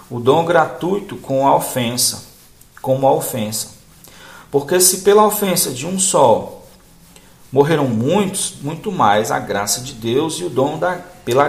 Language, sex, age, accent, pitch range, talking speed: Portuguese, male, 50-69, Brazilian, 110-140 Hz, 145 wpm